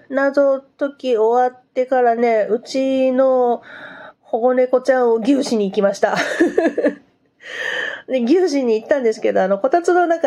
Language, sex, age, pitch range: Japanese, female, 40-59, 205-280 Hz